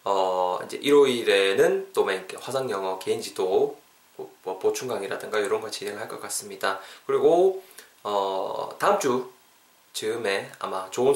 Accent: native